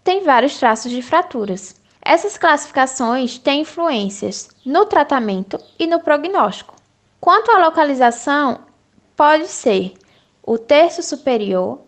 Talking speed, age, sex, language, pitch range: 110 wpm, 10-29, female, Portuguese, 245-330 Hz